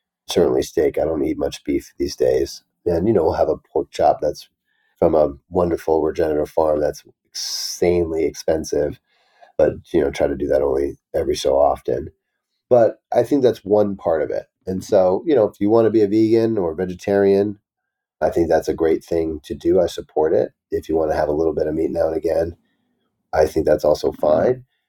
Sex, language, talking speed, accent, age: male, English, 210 wpm, American, 40-59